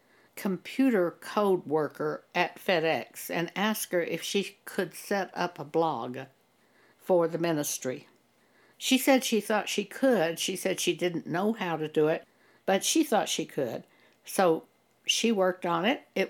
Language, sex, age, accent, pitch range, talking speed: English, female, 60-79, American, 165-215 Hz, 160 wpm